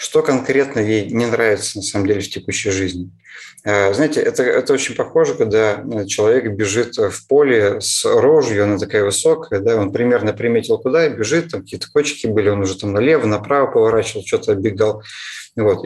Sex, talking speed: male, 175 wpm